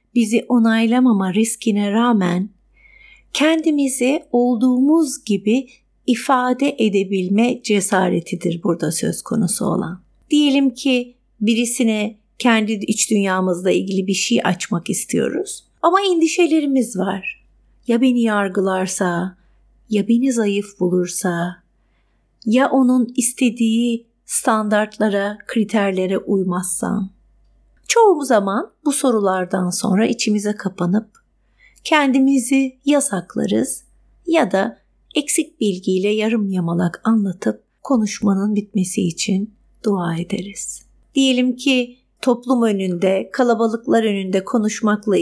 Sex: female